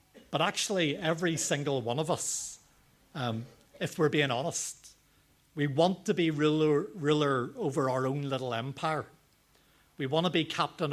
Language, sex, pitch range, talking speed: English, male, 130-155 Hz, 155 wpm